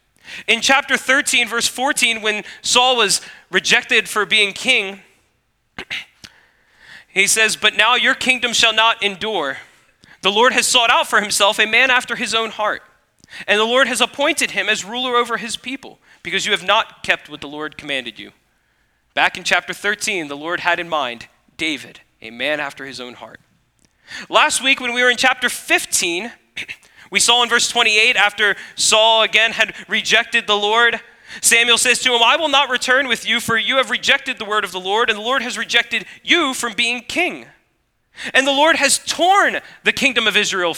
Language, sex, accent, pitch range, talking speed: English, male, American, 195-250 Hz, 190 wpm